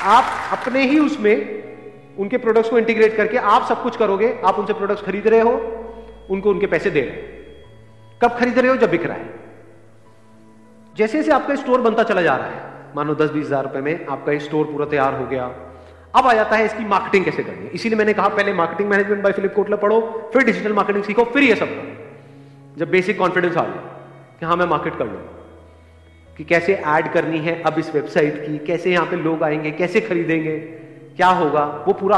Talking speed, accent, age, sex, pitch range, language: 205 wpm, native, 40-59, male, 155-225 Hz, Hindi